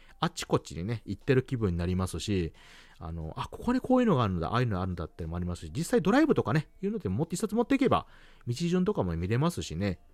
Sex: male